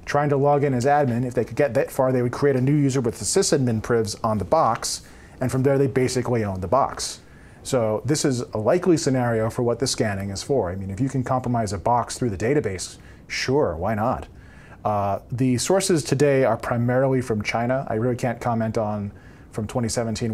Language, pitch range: English, 110-135 Hz